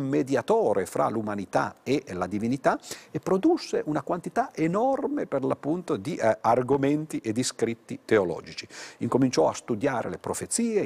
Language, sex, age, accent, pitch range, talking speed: Italian, male, 50-69, native, 115-190 Hz, 140 wpm